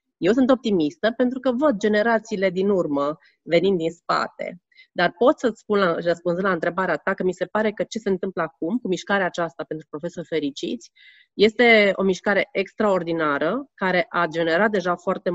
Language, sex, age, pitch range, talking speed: Romanian, female, 30-49, 170-210 Hz, 170 wpm